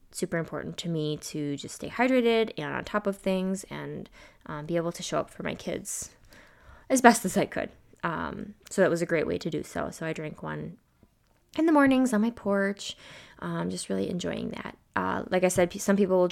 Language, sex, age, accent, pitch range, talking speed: English, female, 20-39, American, 165-200 Hz, 220 wpm